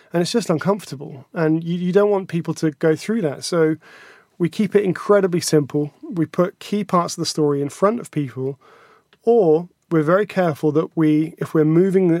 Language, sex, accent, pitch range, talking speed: English, male, British, 145-170 Hz, 195 wpm